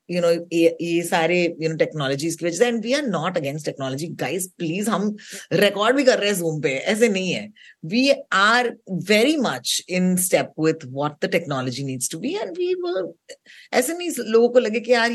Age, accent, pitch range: 30-49, native, 165-235 Hz